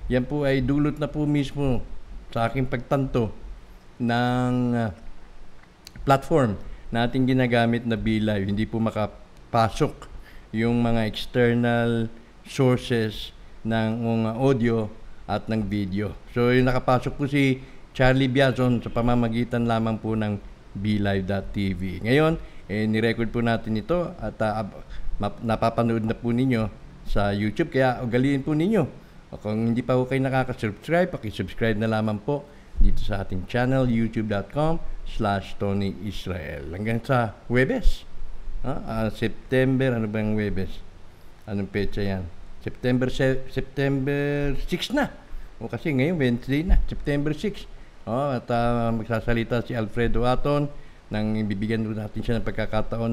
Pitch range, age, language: 110-130 Hz, 50-69, English